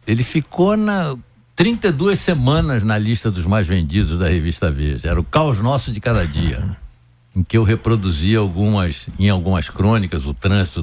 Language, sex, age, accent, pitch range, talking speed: Portuguese, male, 60-79, Brazilian, 90-125 Hz, 175 wpm